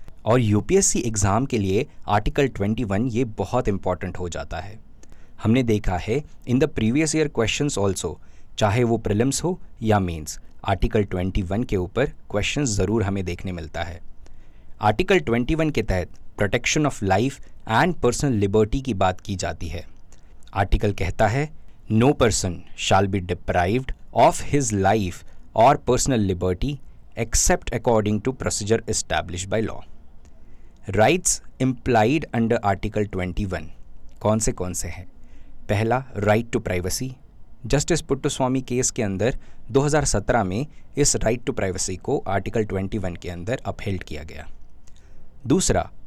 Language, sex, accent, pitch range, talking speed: Hindi, male, native, 95-120 Hz, 150 wpm